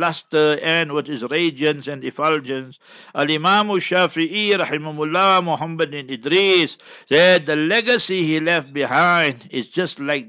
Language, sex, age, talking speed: English, male, 60-79, 135 wpm